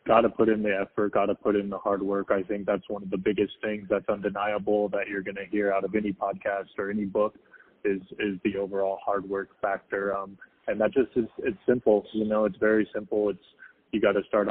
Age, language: 20-39, English